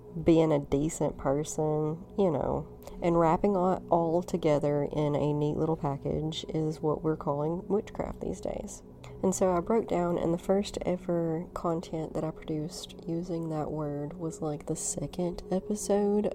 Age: 30-49